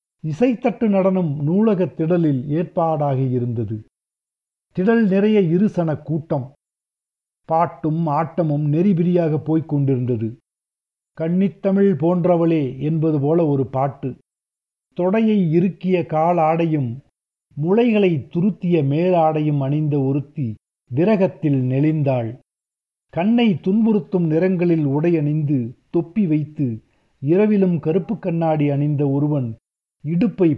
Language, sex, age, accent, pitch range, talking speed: Tamil, male, 50-69, native, 140-175 Hz, 85 wpm